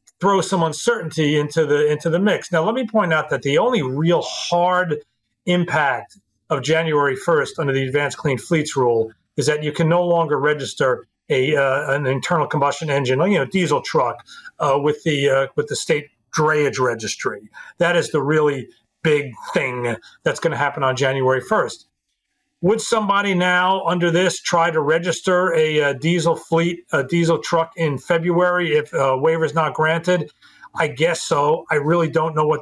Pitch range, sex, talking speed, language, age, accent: 145-175 Hz, male, 180 wpm, English, 40-59, American